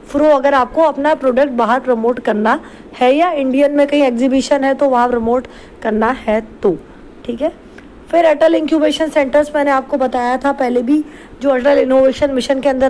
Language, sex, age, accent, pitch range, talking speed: English, female, 20-39, Indian, 270-310 Hz, 160 wpm